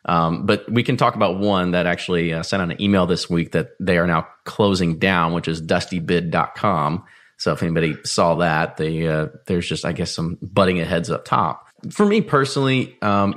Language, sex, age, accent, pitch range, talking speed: English, male, 30-49, American, 85-100 Hz, 205 wpm